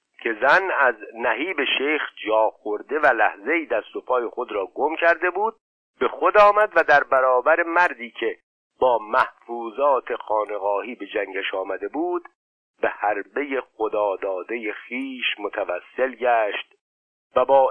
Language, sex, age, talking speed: Persian, male, 50-69, 130 wpm